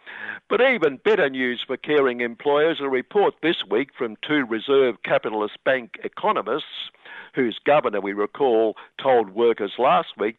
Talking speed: 145 wpm